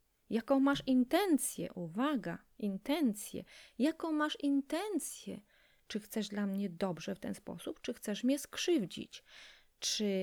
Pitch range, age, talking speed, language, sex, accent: 195-260 Hz, 30-49, 125 wpm, Polish, female, native